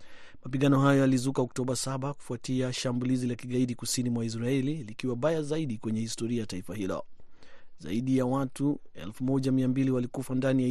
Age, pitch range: 30-49, 120-140 Hz